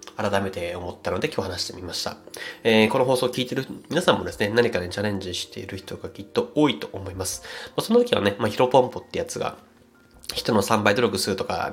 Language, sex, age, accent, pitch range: Japanese, male, 20-39, native, 100-130 Hz